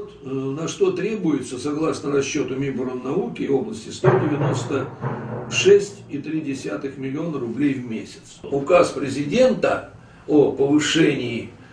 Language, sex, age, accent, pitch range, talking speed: Russian, male, 60-79, native, 140-190 Hz, 85 wpm